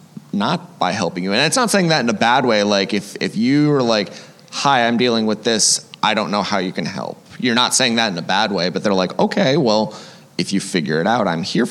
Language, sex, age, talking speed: English, male, 20-39, 260 wpm